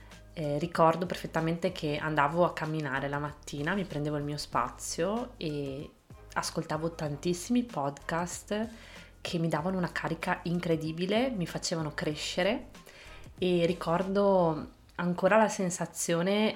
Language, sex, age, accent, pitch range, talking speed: Italian, female, 20-39, native, 145-170 Hz, 115 wpm